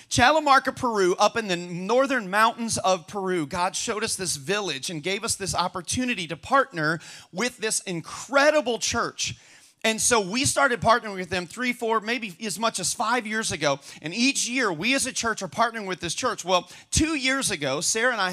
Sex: male